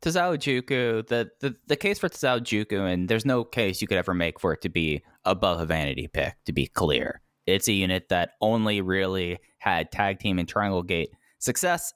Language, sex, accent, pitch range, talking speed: English, male, American, 95-125 Hz, 205 wpm